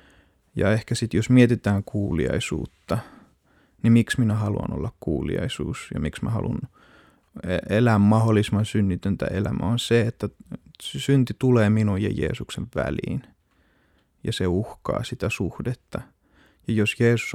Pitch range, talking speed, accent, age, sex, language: 100-115 Hz, 130 wpm, native, 30-49, male, Finnish